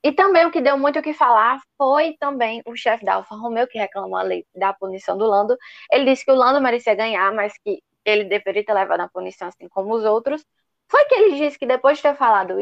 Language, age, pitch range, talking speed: Portuguese, 10-29, 215-290 Hz, 245 wpm